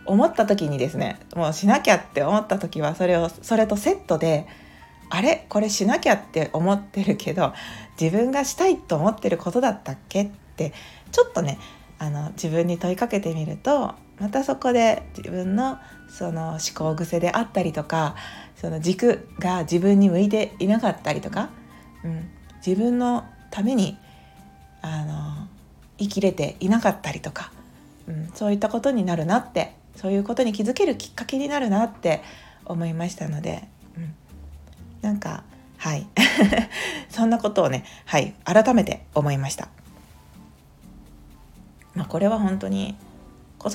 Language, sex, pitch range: Japanese, female, 160-225 Hz